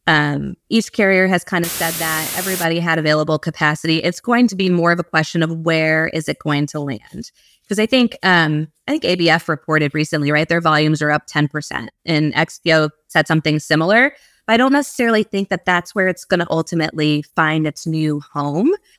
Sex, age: female, 20-39